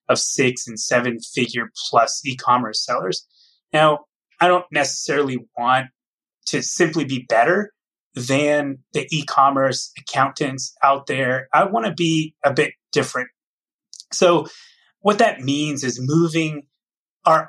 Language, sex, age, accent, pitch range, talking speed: English, male, 30-49, American, 125-150 Hz, 125 wpm